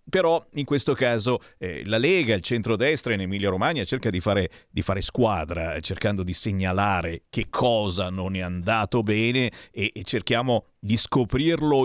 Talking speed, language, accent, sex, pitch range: 150 wpm, Italian, native, male, 105-155 Hz